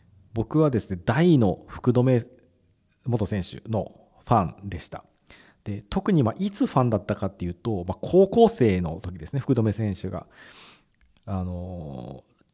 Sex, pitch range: male, 90-120 Hz